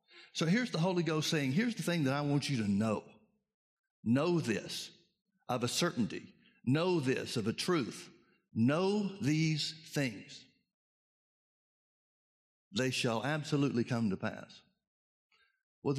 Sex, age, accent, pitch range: male, 60-79, American, 130-165 Hz